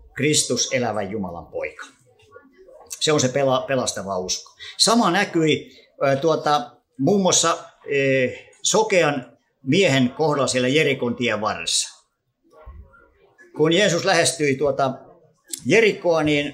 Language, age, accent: Finnish, 50-69, native